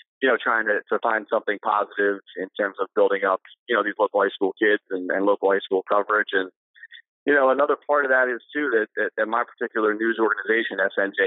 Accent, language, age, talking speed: American, English, 30-49, 230 wpm